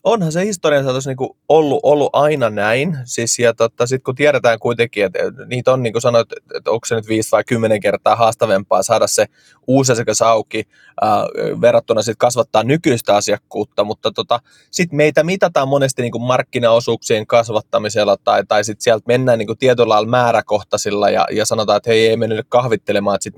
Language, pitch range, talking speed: Finnish, 115-150 Hz, 170 wpm